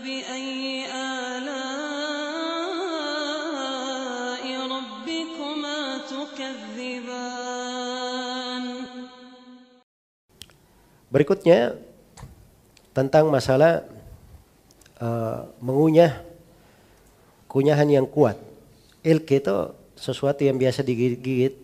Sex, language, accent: male, Indonesian, native